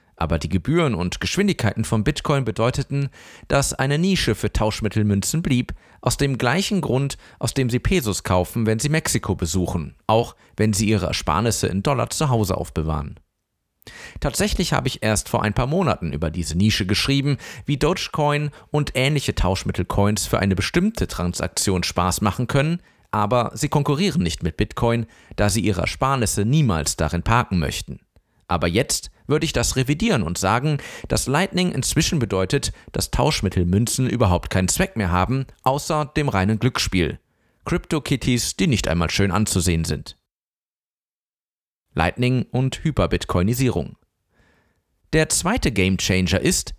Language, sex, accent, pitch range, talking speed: German, male, German, 95-140 Hz, 145 wpm